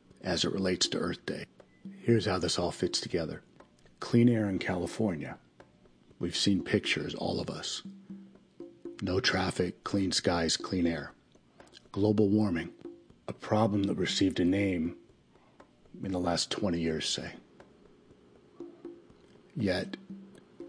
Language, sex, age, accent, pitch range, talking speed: English, male, 40-59, American, 90-120 Hz, 125 wpm